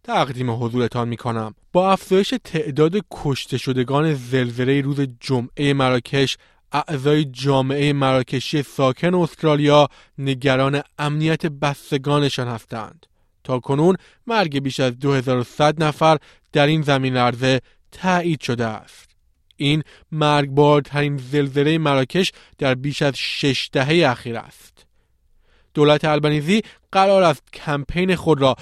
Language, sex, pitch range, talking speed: Persian, male, 130-155 Hz, 115 wpm